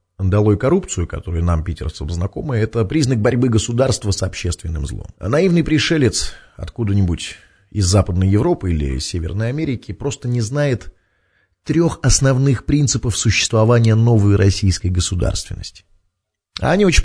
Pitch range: 95-130 Hz